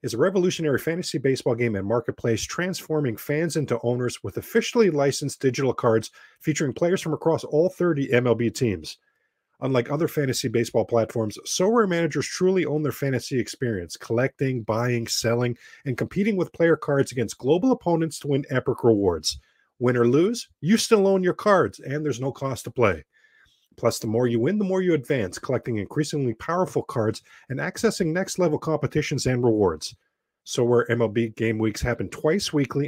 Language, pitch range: English, 120-160 Hz